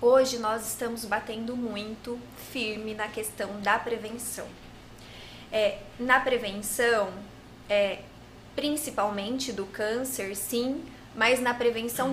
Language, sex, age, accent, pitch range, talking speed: Portuguese, female, 20-39, Brazilian, 215-260 Hz, 105 wpm